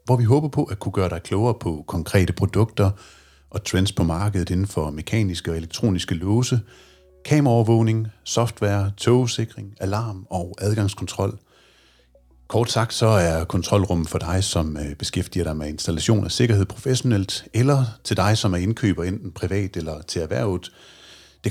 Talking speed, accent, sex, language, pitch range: 155 wpm, native, male, Danish, 85-110 Hz